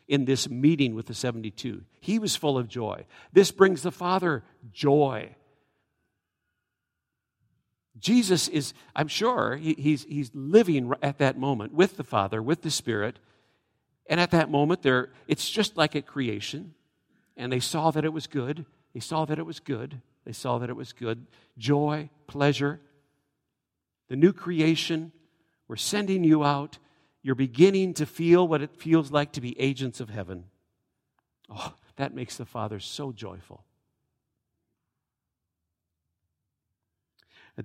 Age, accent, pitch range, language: 50-69, American, 120-155 Hz, English